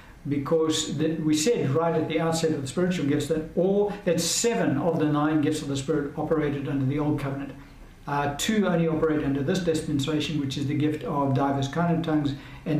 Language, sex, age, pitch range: English, male, 60-79, 140-165 Hz